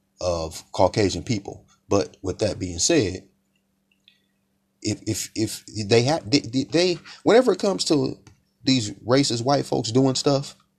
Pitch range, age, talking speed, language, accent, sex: 95-130 Hz, 30-49, 140 wpm, English, American, male